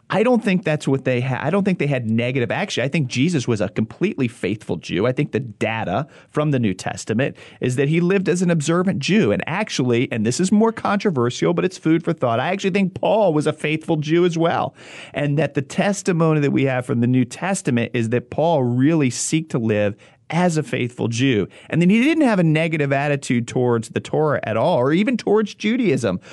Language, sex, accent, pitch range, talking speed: English, male, American, 115-160 Hz, 225 wpm